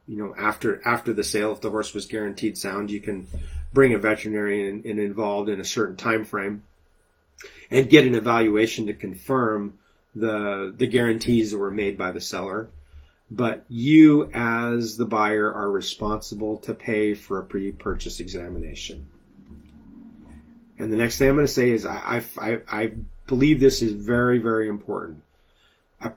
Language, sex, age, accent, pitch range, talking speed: English, male, 30-49, American, 105-135 Hz, 165 wpm